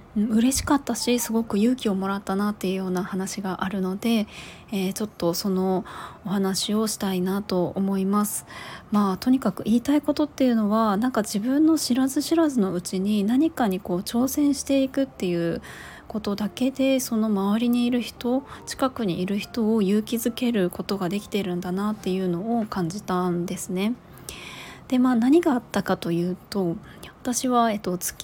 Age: 20-39